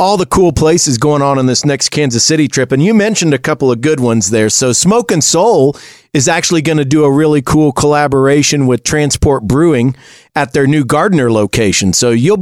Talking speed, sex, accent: 215 wpm, male, American